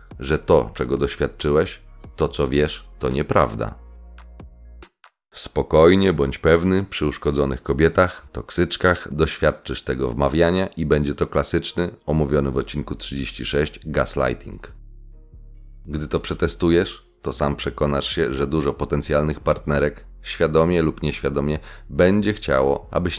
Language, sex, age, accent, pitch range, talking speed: Polish, male, 30-49, native, 70-85 Hz, 115 wpm